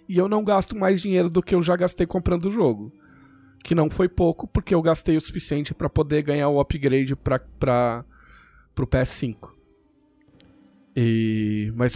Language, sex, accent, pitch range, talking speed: Portuguese, male, Brazilian, 120-165 Hz, 170 wpm